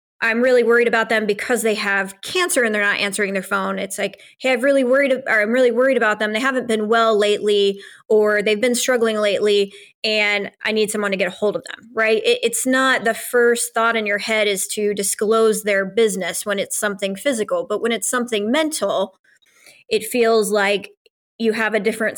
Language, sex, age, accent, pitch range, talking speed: English, female, 20-39, American, 205-230 Hz, 200 wpm